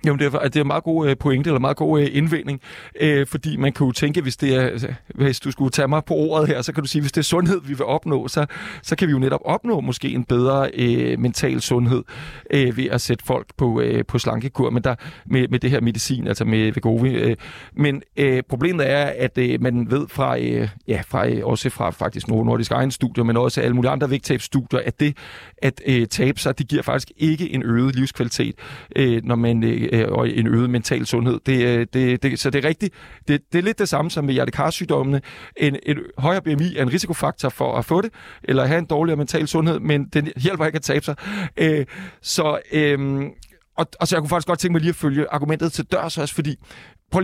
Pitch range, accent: 125-155 Hz, native